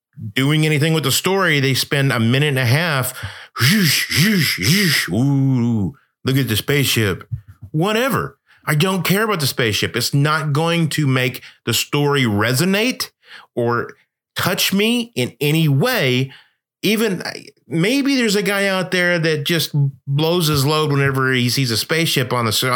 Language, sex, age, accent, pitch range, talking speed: English, male, 30-49, American, 120-170 Hz, 160 wpm